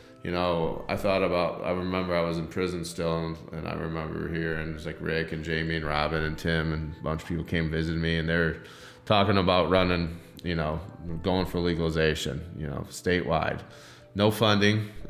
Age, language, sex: 20-39, English, male